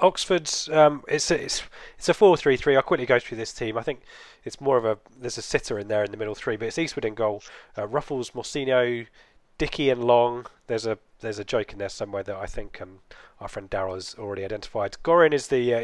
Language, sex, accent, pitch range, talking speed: English, male, British, 110-140 Hz, 235 wpm